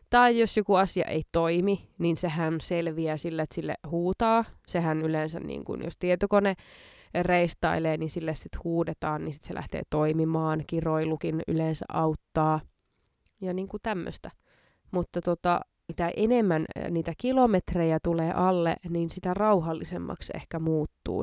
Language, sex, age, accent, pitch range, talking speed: Finnish, female, 20-39, native, 155-180 Hz, 135 wpm